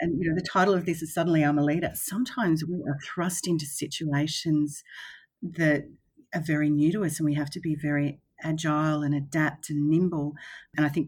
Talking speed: 205 wpm